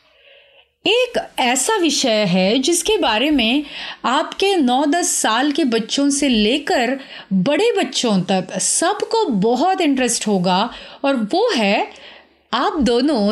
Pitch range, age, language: 210-325 Hz, 30-49, Hindi